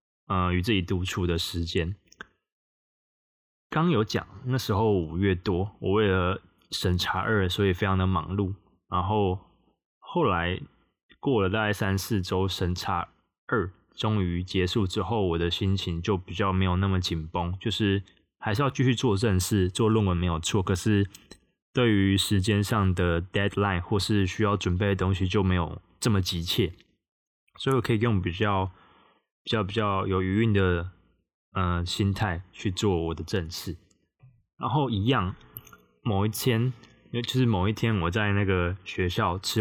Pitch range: 90-110 Hz